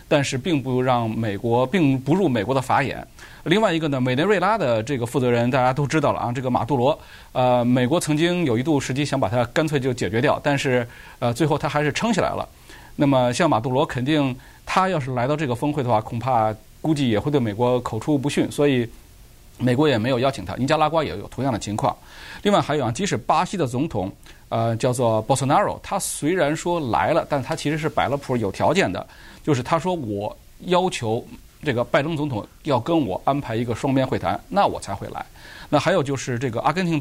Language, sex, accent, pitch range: Chinese, male, native, 120-150 Hz